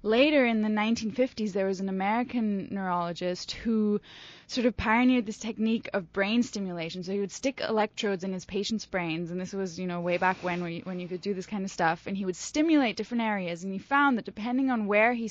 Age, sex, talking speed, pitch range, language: 20-39, female, 225 wpm, 185-225 Hz, English